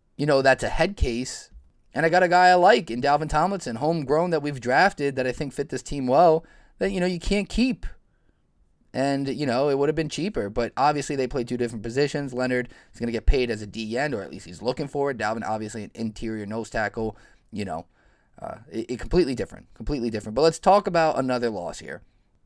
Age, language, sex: 20-39, English, male